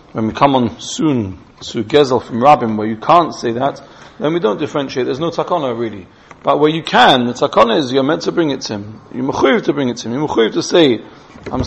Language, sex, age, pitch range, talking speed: English, male, 40-59, 130-190 Hz, 235 wpm